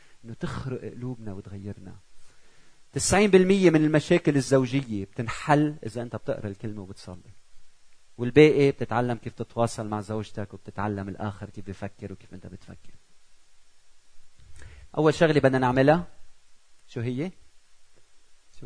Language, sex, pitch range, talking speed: Arabic, male, 100-145 Hz, 110 wpm